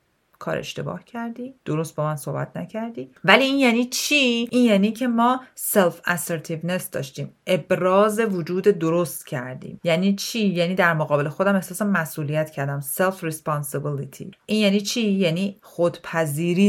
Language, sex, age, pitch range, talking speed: Persian, female, 40-59, 150-195 Hz, 135 wpm